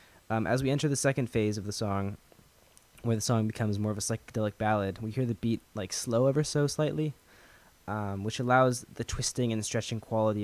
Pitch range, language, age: 95-115 Hz, English, 10-29